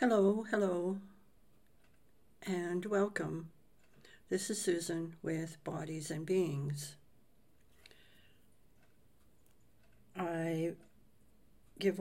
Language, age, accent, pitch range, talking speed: English, 60-79, American, 150-185 Hz, 65 wpm